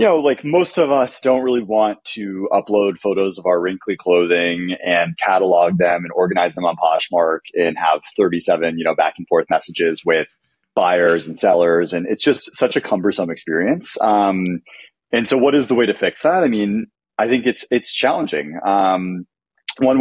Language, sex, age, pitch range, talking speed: English, male, 30-49, 85-110 Hz, 190 wpm